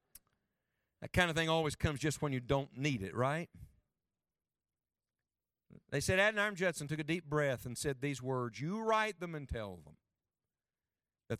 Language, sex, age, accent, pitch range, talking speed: English, male, 50-69, American, 125-175 Hz, 170 wpm